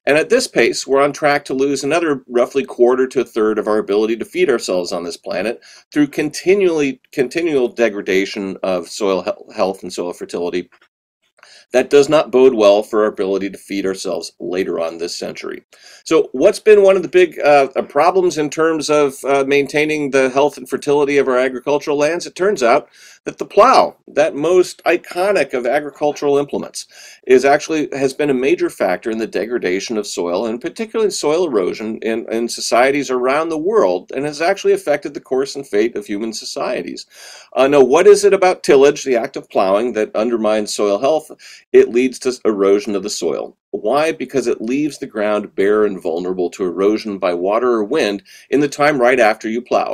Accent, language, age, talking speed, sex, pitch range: American, English, 40-59, 190 wpm, male, 110-180 Hz